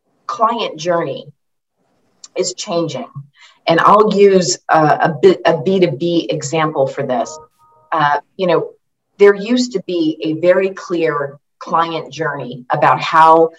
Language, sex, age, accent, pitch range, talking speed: English, female, 40-59, American, 150-170 Hz, 120 wpm